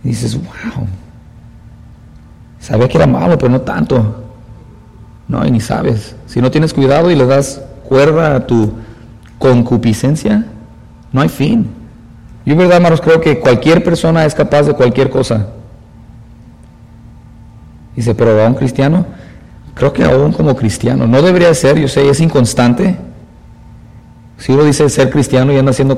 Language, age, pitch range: English, 40-59, 115-140 Hz